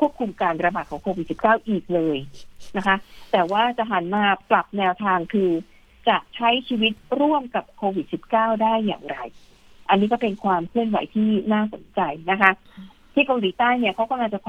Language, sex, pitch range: Thai, female, 195-235 Hz